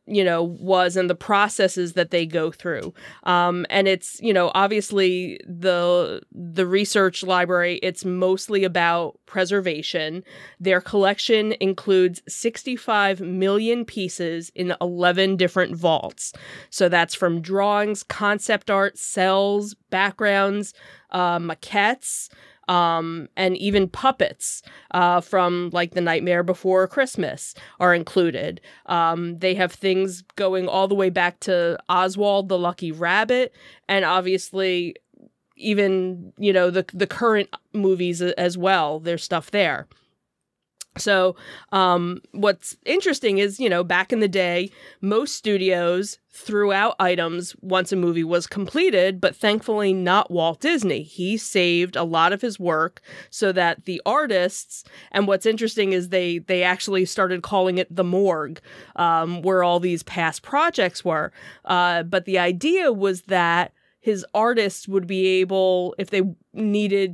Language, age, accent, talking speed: English, 20-39, American, 140 wpm